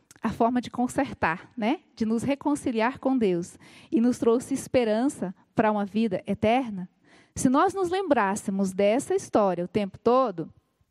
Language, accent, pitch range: Portuguese, Brazilian, 210-270 Hz